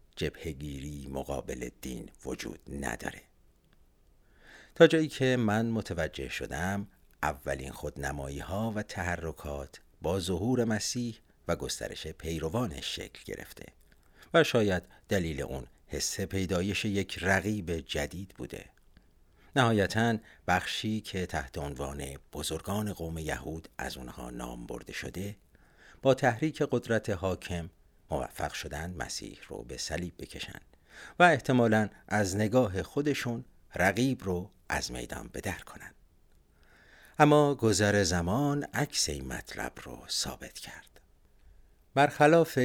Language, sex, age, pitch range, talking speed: Persian, male, 50-69, 75-110 Hz, 110 wpm